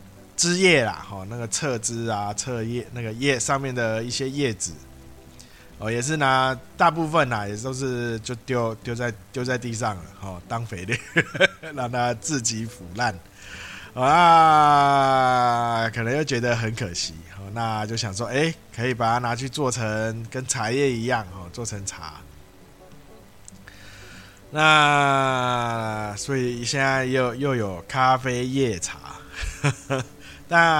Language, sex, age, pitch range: Chinese, male, 20-39, 100-135 Hz